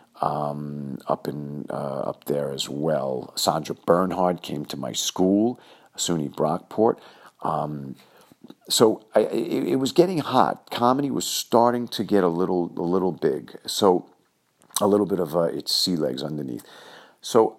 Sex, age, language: male, 50-69, English